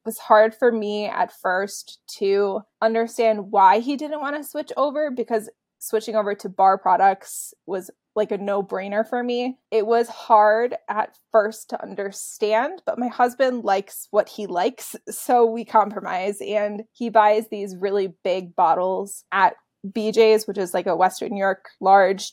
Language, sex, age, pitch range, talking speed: English, female, 20-39, 200-235 Hz, 165 wpm